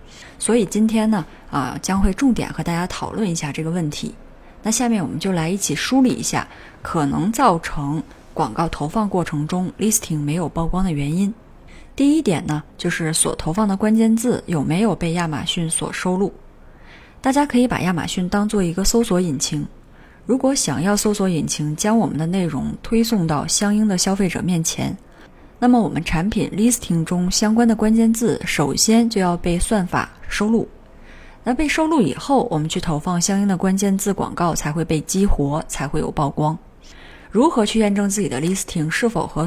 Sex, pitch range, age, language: female, 165-220 Hz, 20-39, Chinese